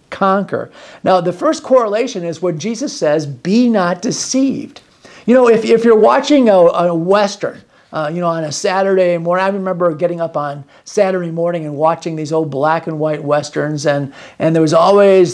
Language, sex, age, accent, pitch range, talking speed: English, male, 50-69, American, 155-195 Hz, 190 wpm